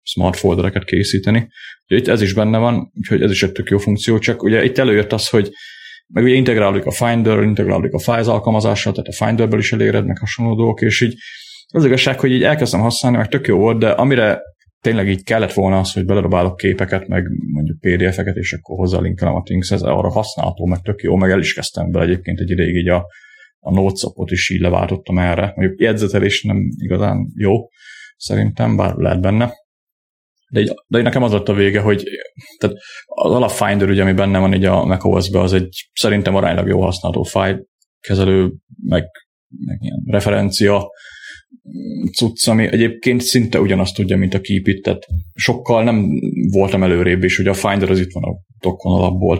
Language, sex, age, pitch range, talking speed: Hungarian, male, 30-49, 90-110 Hz, 175 wpm